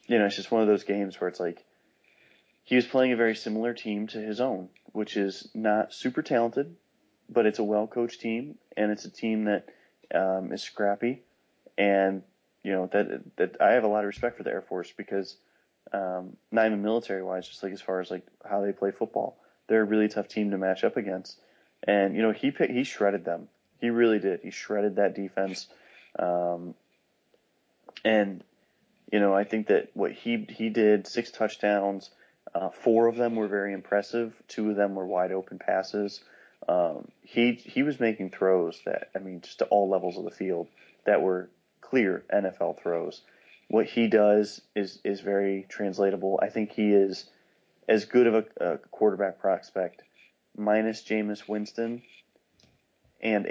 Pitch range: 95-110 Hz